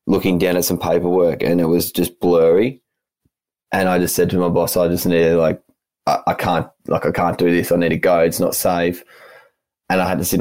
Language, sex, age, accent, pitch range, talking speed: English, male, 10-29, Australian, 85-90 Hz, 240 wpm